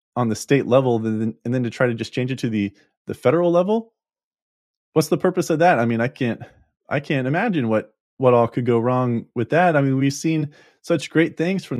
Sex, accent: male, American